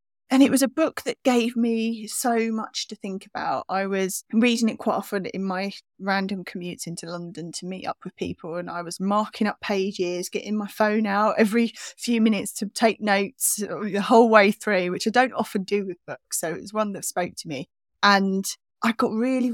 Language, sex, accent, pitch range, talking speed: English, female, British, 185-230 Hz, 210 wpm